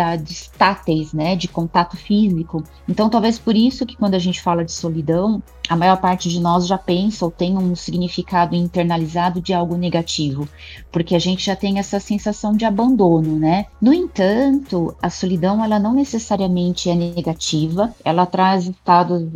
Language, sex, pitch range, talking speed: Portuguese, female, 175-215 Hz, 165 wpm